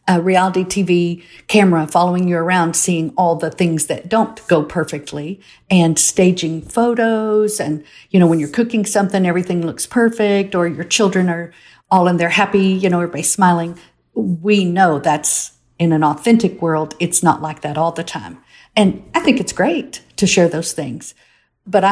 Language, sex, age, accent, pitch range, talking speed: English, female, 50-69, American, 170-215 Hz, 175 wpm